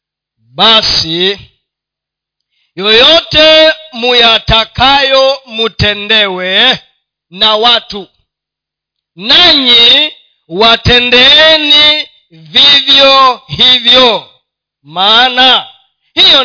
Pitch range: 210-290 Hz